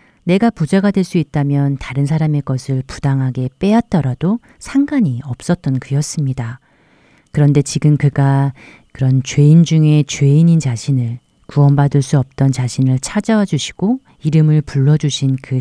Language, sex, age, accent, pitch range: Korean, female, 40-59, native, 130-170 Hz